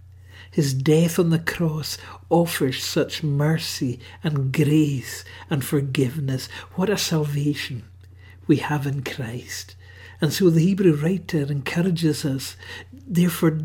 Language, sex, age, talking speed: English, male, 60-79, 120 wpm